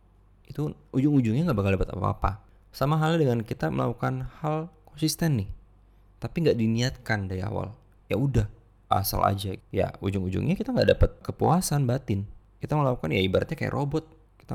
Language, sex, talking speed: Indonesian, male, 155 wpm